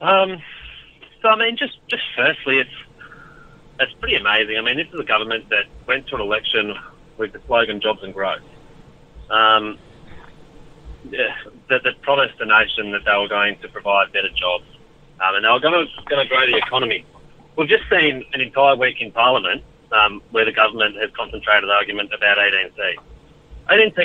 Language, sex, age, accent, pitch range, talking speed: English, male, 30-49, Australian, 115-155 Hz, 180 wpm